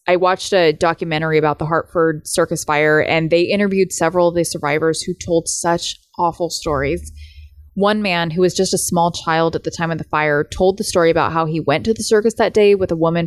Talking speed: 225 wpm